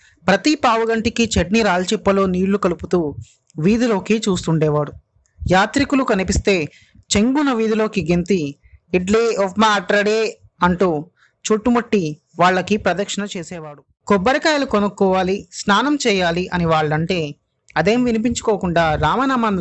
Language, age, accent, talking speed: Telugu, 30-49, native, 90 wpm